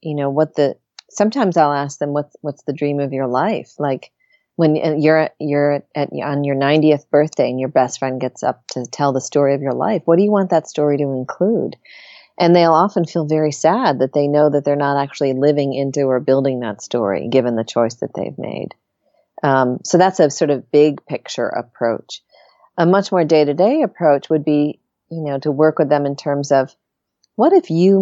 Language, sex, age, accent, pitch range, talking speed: English, female, 40-59, American, 135-160 Hz, 215 wpm